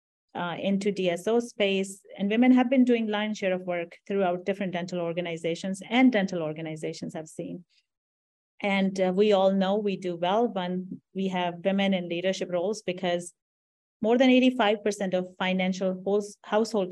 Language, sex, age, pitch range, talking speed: English, female, 30-49, 180-205 Hz, 155 wpm